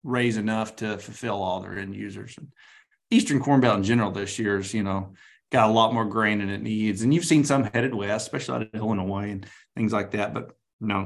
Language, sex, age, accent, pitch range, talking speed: English, male, 30-49, American, 105-130 Hz, 230 wpm